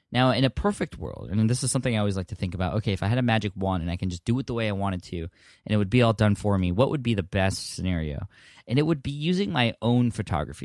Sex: male